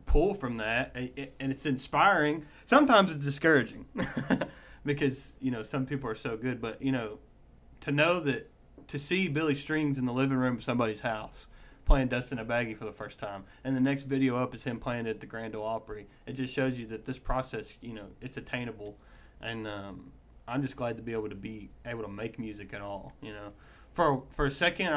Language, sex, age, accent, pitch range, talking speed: English, male, 20-39, American, 110-135 Hz, 210 wpm